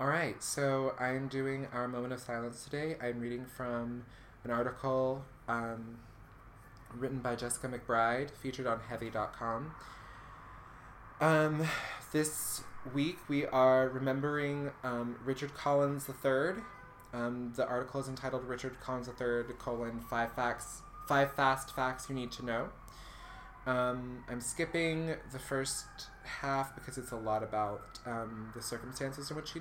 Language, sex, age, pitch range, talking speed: English, male, 20-39, 115-135 Hz, 130 wpm